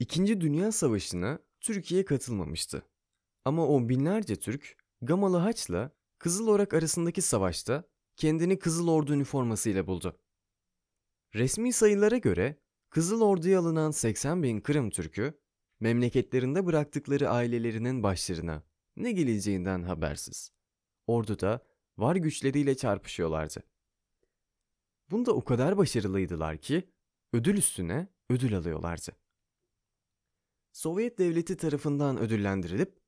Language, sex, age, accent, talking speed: Turkish, male, 30-49, native, 100 wpm